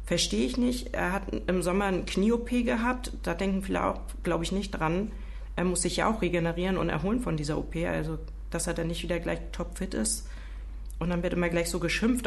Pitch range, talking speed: 160-200 Hz, 220 wpm